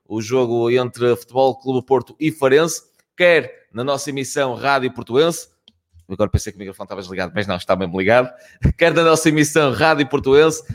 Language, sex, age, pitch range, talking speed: Portuguese, male, 20-39, 115-150 Hz, 180 wpm